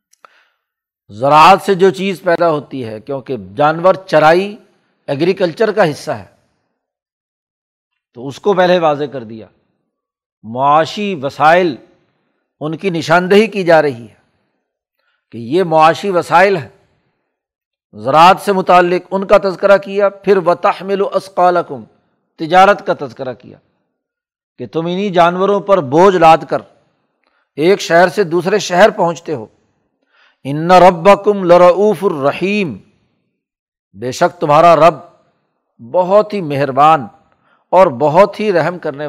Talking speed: 125 wpm